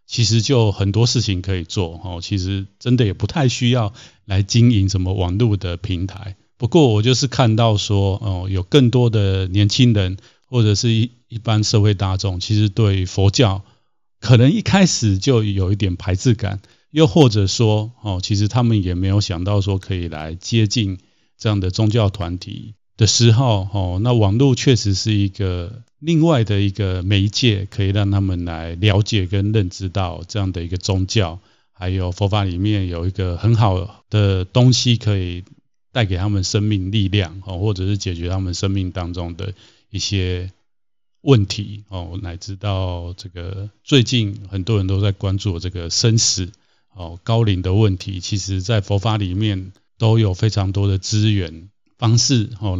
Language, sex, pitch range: Chinese, male, 95-110 Hz